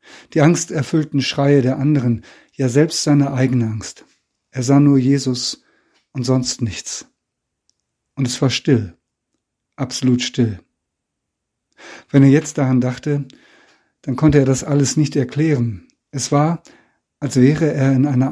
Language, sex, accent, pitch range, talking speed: German, male, German, 120-140 Hz, 140 wpm